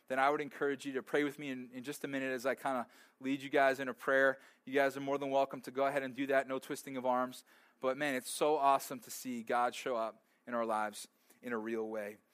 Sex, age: male, 20-39